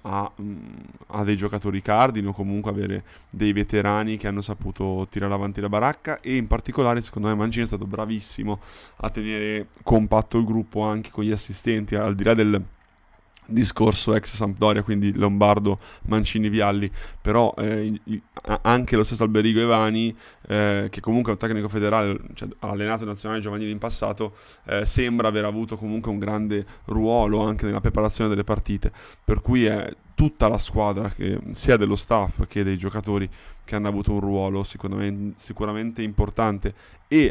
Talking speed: 160 wpm